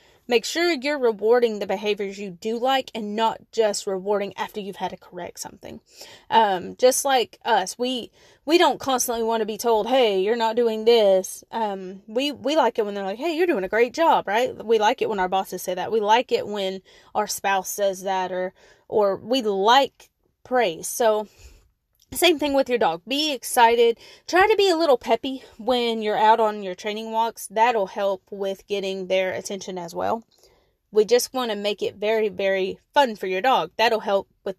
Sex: female